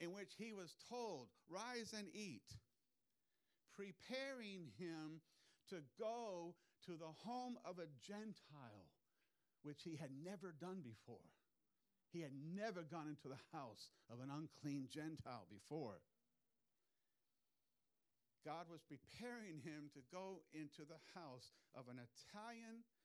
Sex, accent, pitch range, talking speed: male, American, 155-210 Hz, 125 wpm